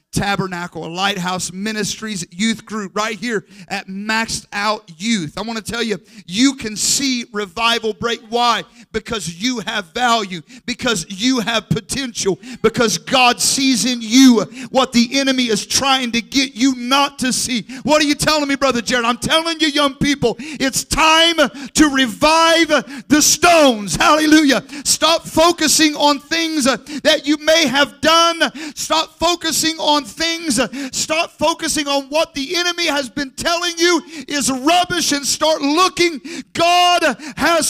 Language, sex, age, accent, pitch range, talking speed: English, male, 50-69, American, 225-315 Hz, 155 wpm